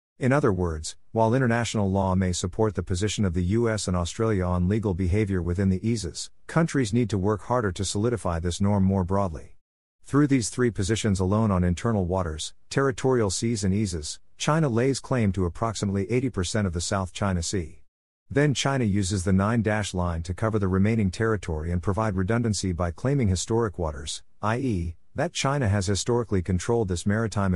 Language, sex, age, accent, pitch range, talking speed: English, male, 50-69, American, 90-115 Hz, 175 wpm